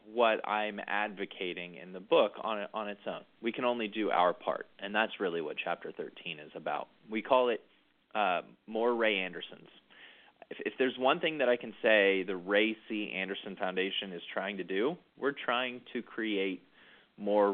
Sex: male